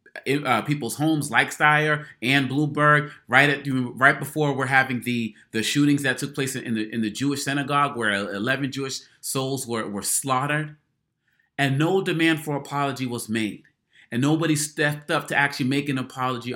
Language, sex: English, male